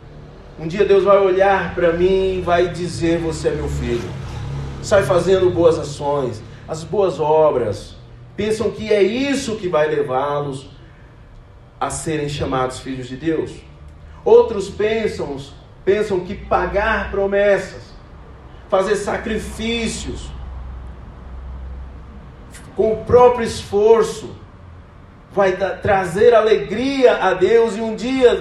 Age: 40-59